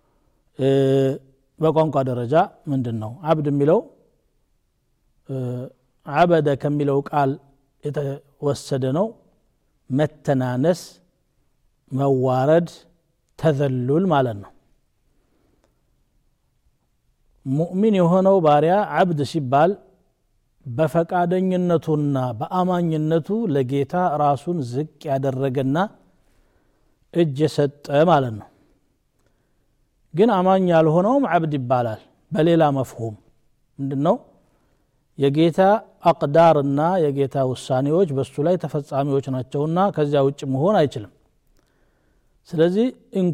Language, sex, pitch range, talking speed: Amharic, male, 135-170 Hz, 70 wpm